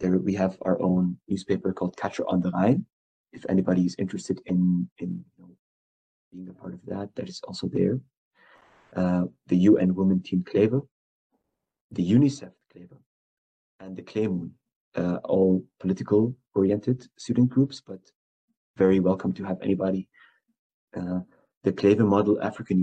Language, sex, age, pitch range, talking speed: English, male, 30-49, 90-100 Hz, 150 wpm